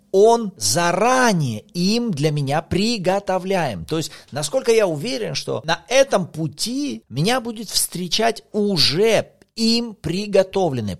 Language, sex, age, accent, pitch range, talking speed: Russian, male, 40-59, native, 135-200 Hz, 115 wpm